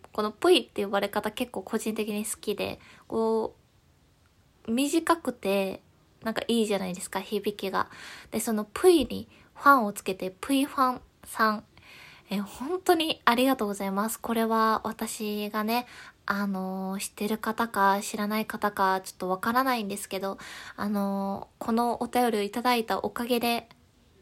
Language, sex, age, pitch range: Japanese, female, 20-39, 195-245 Hz